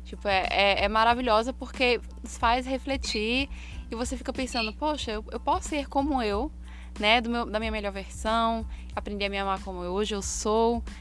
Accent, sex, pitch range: Brazilian, female, 205-255 Hz